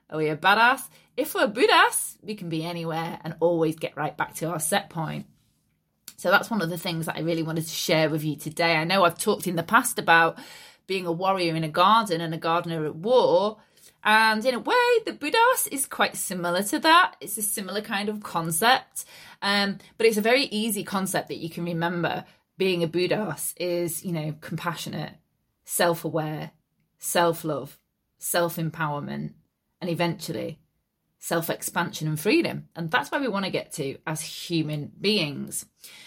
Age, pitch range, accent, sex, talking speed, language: 20-39, 165-215 Hz, British, female, 180 wpm, English